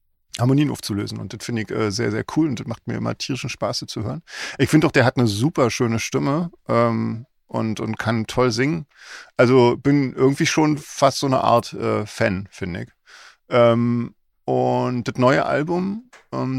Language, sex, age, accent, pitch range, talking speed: German, male, 50-69, German, 110-135 Hz, 190 wpm